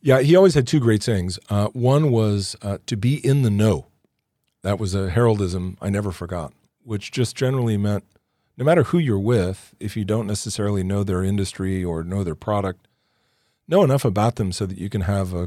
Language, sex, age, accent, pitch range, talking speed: English, male, 40-59, American, 90-110 Hz, 205 wpm